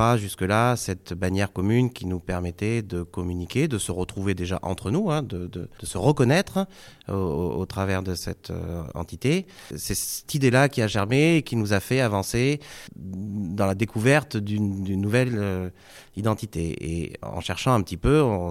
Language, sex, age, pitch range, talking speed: French, male, 30-49, 90-120 Hz, 180 wpm